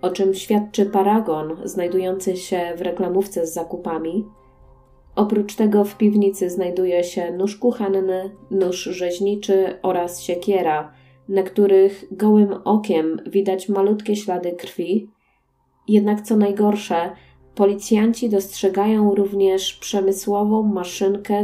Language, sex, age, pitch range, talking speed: Polish, female, 20-39, 175-205 Hz, 105 wpm